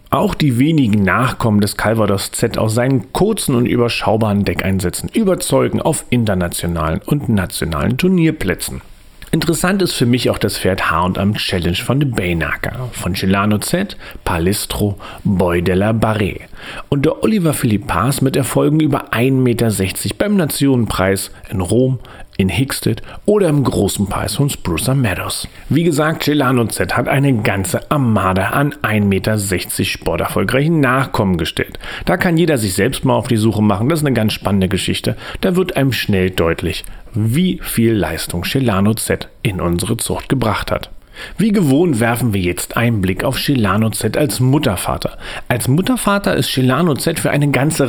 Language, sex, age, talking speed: German, male, 40-59, 155 wpm